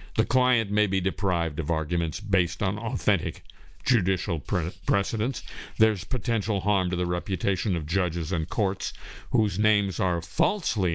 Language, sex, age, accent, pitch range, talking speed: English, male, 50-69, American, 85-120 Hz, 150 wpm